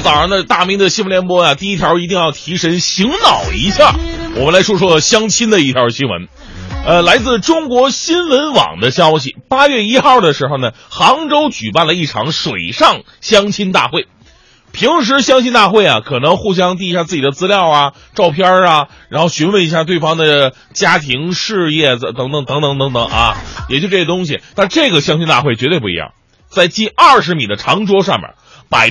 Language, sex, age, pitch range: Chinese, male, 30-49, 145-220 Hz